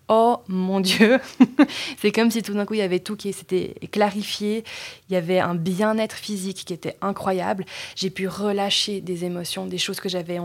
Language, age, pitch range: French, 20-39, 185-220 Hz